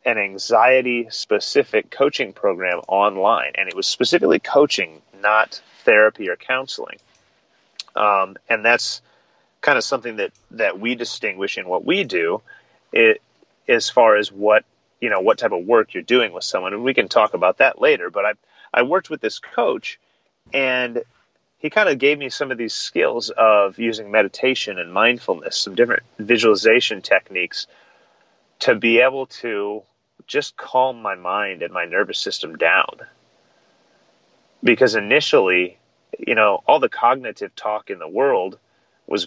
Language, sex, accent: English, male, American